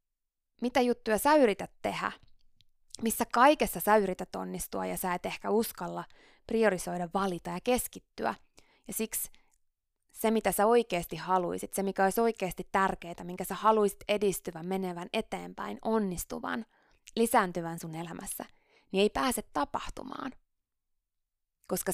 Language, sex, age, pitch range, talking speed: Finnish, female, 20-39, 170-220 Hz, 125 wpm